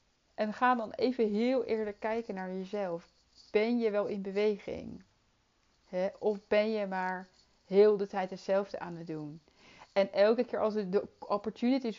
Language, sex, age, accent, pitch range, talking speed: Dutch, female, 30-49, Dutch, 175-215 Hz, 155 wpm